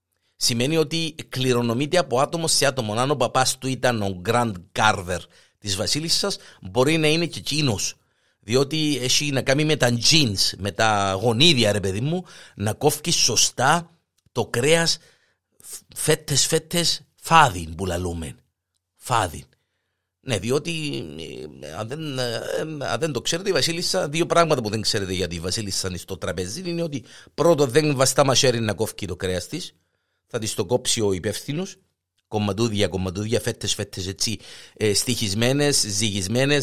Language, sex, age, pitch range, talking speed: Greek, male, 50-69, 105-155 Hz, 145 wpm